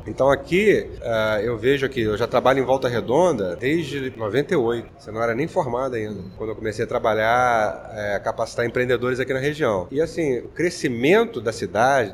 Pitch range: 115-175 Hz